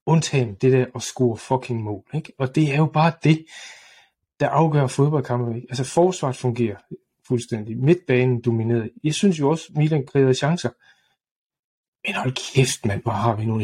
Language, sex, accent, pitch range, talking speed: Danish, male, native, 120-145 Hz, 175 wpm